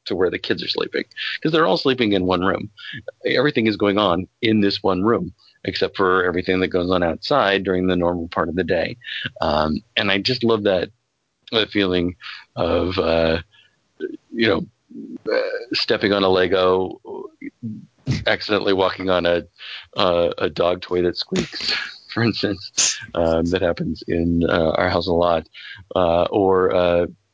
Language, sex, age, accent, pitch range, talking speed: English, male, 40-59, American, 90-105 Hz, 165 wpm